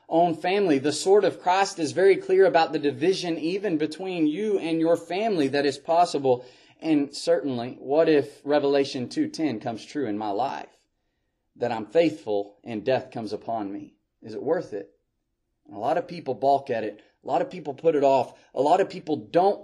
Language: English